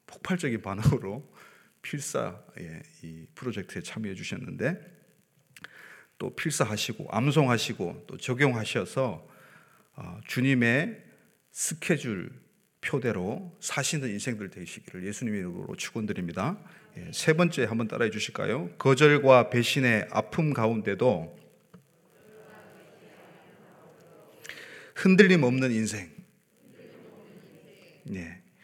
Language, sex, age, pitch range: Korean, male, 30-49, 110-155 Hz